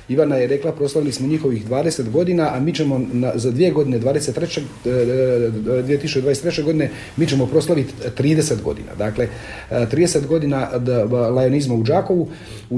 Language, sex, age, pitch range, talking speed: Croatian, male, 40-59, 115-150 Hz, 150 wpm